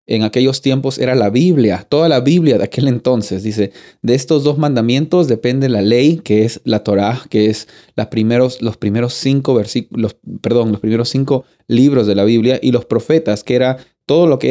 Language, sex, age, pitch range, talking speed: Spanish, male, 30-49, 110-135 Hz, 175 wpm